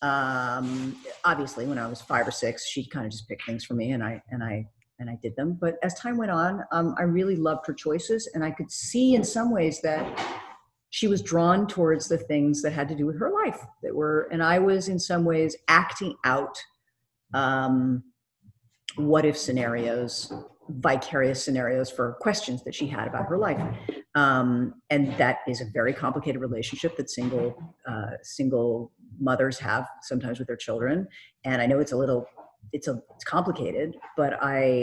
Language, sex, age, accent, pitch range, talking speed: English, female, 50-69, American, 125-175 Hz, 190 wpm